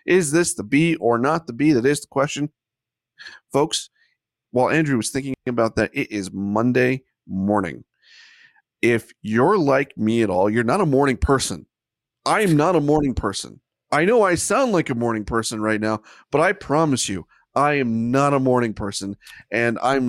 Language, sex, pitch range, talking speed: English, male, 115-160 Hz, 185 wpm